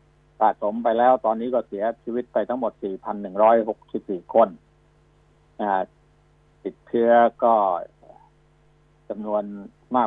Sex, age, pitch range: male, 60-79, 120-150 Hz